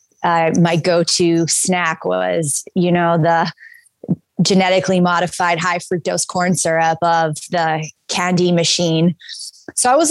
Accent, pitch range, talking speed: American, 170-200 Hz, 130 wpm